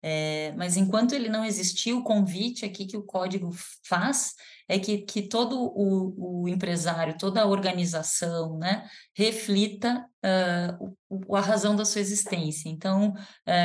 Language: Portuguese